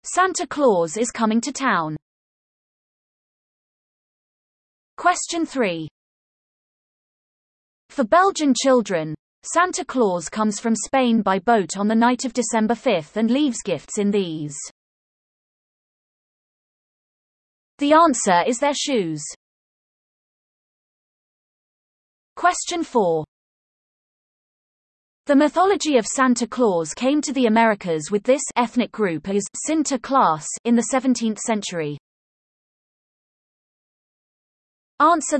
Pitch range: 195-285 Hz